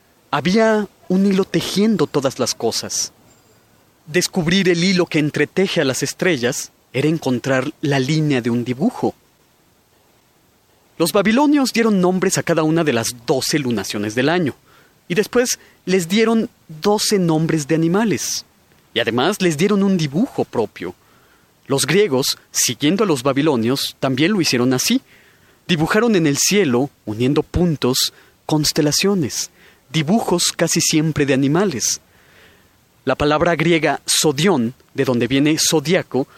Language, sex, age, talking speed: Spanish, male, 30-49, 130 wpm